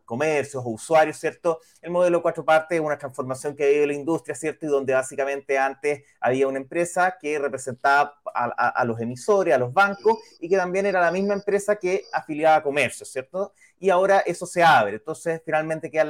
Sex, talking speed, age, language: male, 200 wpm, 30-49, Spanish